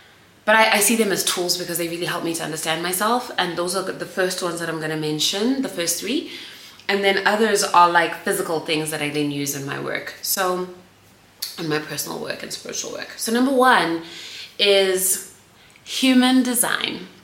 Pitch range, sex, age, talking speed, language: 165-210 Hz, female, 20-39, 200 wpm, English